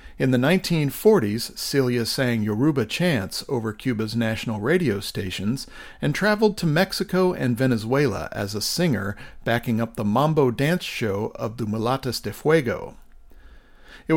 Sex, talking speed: male, 140 wpm